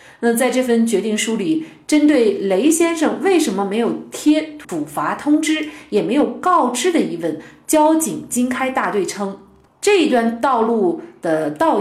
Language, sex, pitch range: Chinese, female, 190-280 Hz